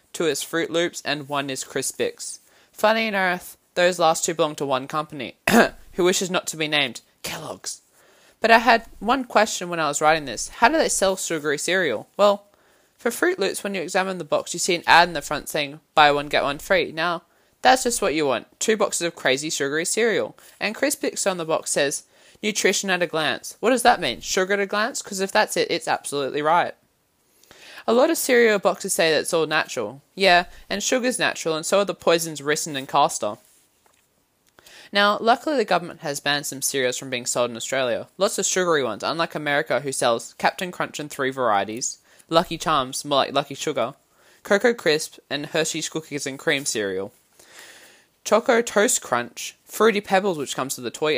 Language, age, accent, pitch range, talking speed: English, 20-39, Australian, 145-205 Hz, 200 wpm